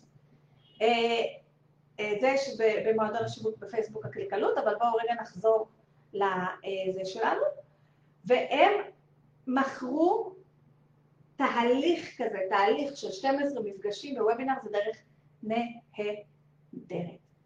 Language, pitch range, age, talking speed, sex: Hebrew, 190-270 Hz, 30-49, 85 wpm, female